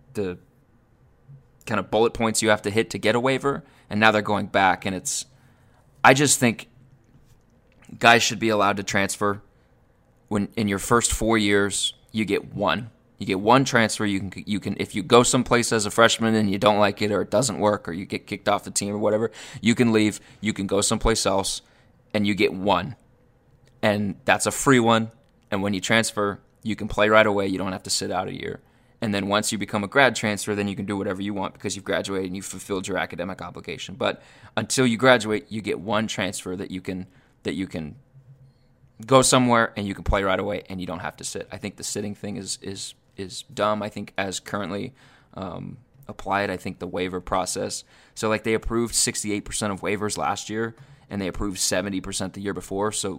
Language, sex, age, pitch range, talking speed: English, male, 20-39, 100-115 Hz, 220 wpm